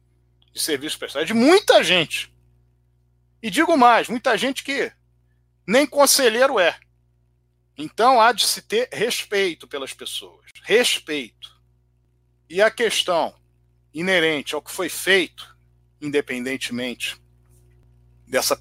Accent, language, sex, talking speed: Brazilian, Portuguese, male, 115 wpm